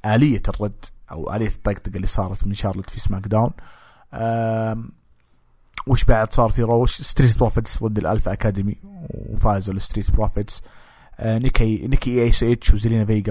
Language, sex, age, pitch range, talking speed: English, male, 30-49, 100-115 Hz, 145 wpm